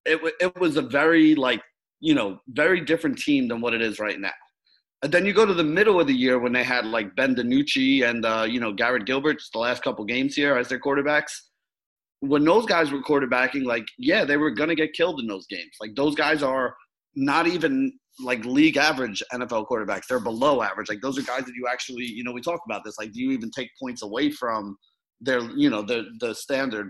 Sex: male